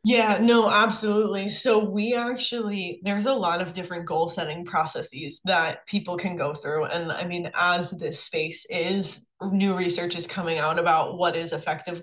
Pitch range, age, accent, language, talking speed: 175-210 Hz, 10-29, American, English, 175 wpm